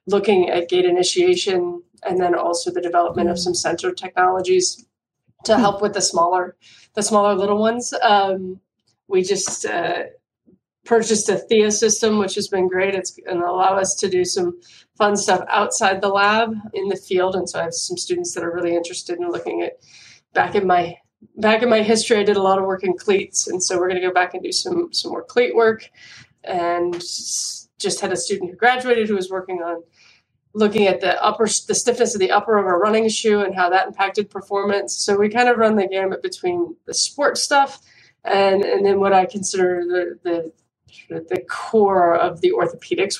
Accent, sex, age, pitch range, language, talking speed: American, female, 20-39, 180-225 Hz, English, 200 wpm